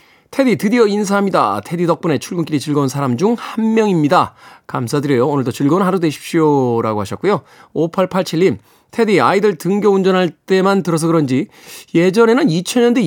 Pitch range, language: 150-210 Hz, Korean